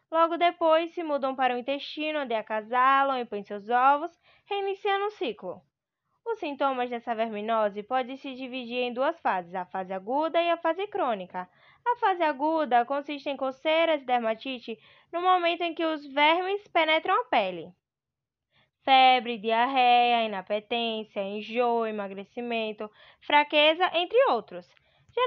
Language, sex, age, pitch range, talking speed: Portuguese, female, 10-29, 235-335 Hz, 140 wpm